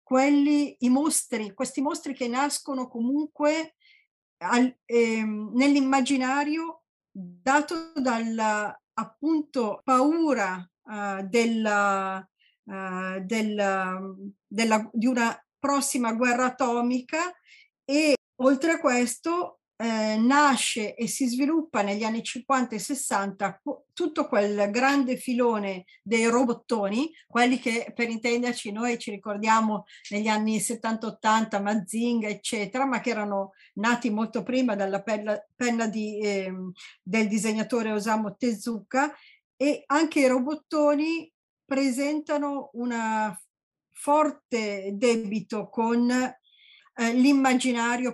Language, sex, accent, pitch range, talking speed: Italian, female, native, 215-275 Hz, 100 wpm